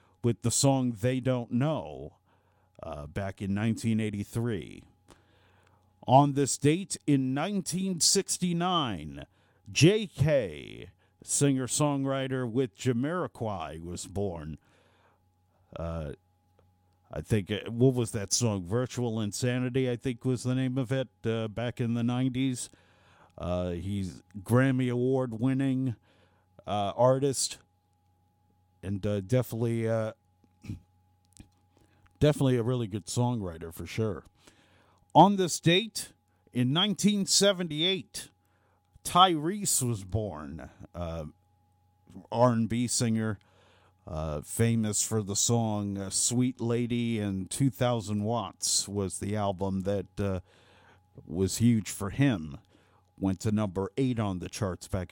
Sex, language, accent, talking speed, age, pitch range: male, English, American, 105 wpm, 50-69, 90-130 Hz